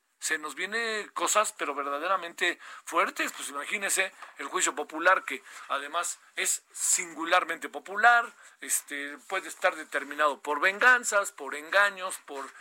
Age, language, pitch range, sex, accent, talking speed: 50-69, Spanish, 170-240 Hz, male, Mexican, 125 wpm